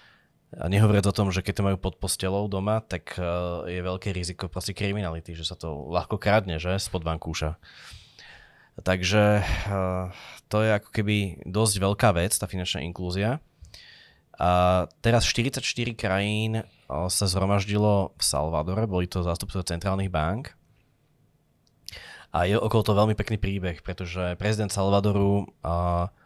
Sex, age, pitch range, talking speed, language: male, 20-39, 90-100 Hz, 135 wpm, Slovak